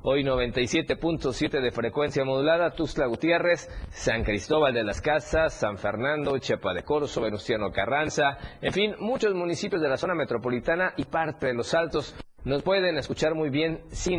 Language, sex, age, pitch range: Spanish, male, 50-69, 130-165 Hz